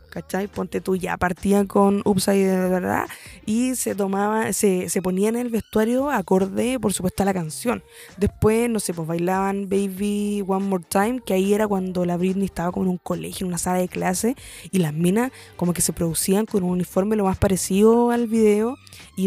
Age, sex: 20-39, female